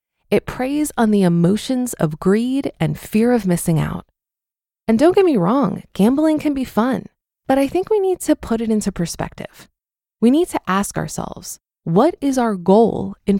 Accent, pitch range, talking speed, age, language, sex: American, 190-250 Hz, 185 wpm, 20-39, English, female